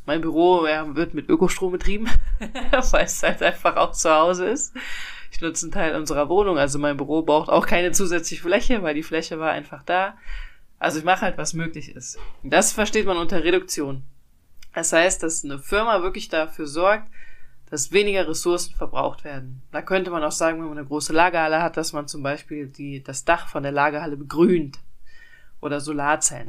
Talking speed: 190 wpm